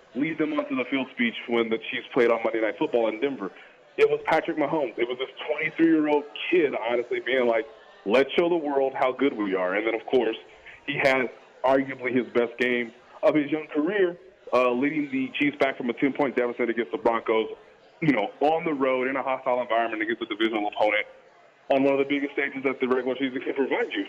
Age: 20-39